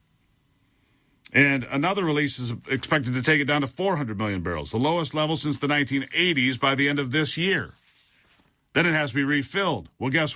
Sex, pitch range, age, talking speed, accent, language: male, 125-165 Hz, 50-69, 190 wpm, American, English